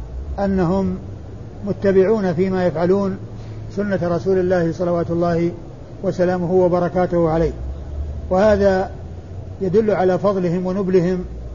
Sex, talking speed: male, 90 wpm